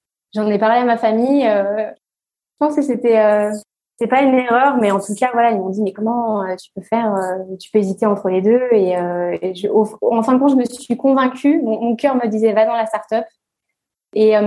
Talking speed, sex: 255 wpm, female